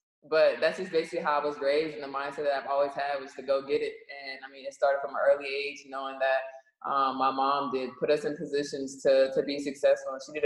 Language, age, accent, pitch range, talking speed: English, 20-39, American, 140-160 Hz, 260 wpm